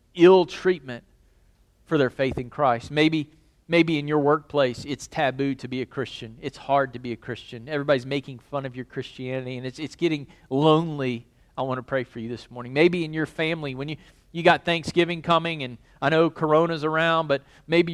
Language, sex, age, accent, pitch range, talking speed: English, male, 40-59, American, 130-170 Hz, 200 wpm